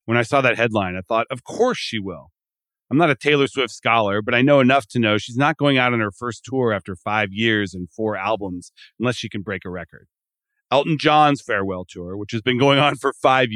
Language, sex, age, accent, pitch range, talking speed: English, male, 40-59, American, 100-135 Hz, 240 wpm